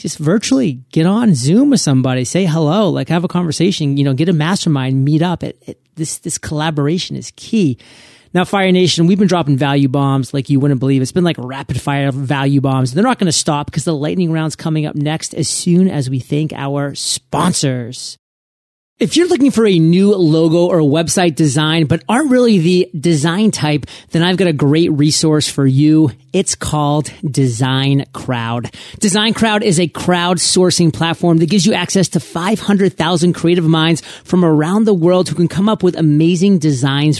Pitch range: 145-185 Hz